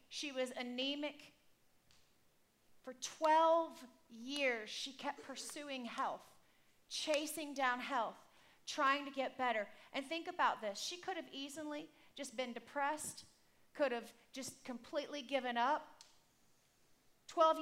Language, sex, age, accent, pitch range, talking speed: English, female, 40-59, American, 250-300 Hz, 120 wpm